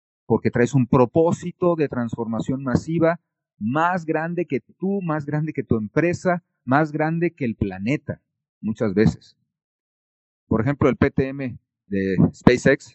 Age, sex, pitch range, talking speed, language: 40-59, male, 110-160 Hz, 135 wpm, English